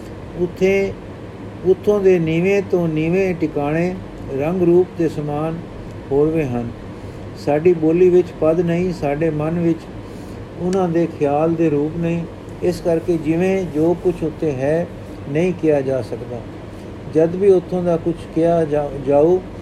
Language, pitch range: Punjabi, 135-170 Hz